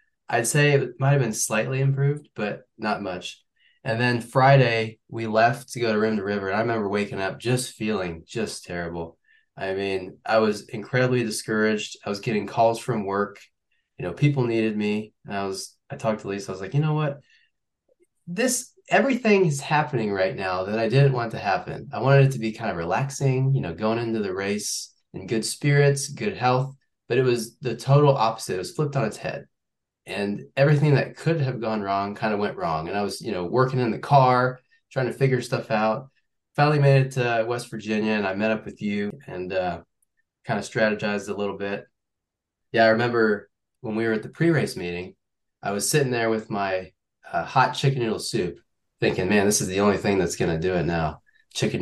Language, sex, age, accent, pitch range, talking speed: English, male, 20-39, American, 105-140 Hz, 210 wpm